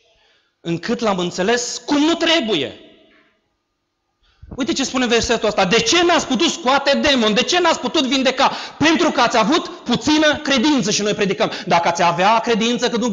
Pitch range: 210-260 Hz